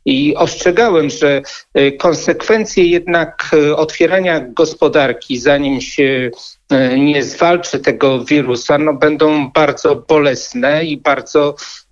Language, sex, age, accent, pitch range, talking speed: Polish, male, 50-69, native, 140-160 Hz, 90 wpm